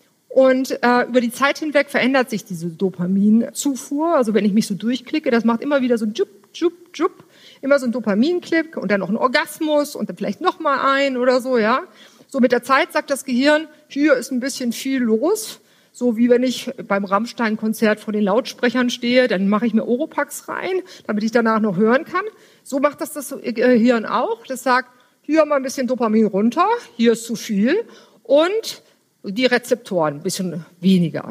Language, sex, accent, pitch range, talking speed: German, female, German, 210-280 Hz, 195 wpm